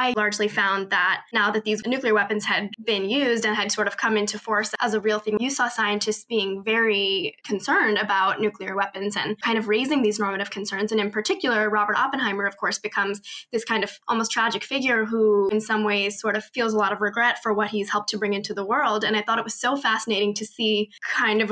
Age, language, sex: 10-29, English, female